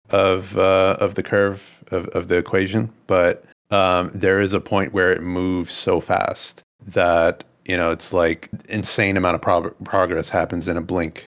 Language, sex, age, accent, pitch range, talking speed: English, male, 30-49, American, 85-100 Hz, 180 wpm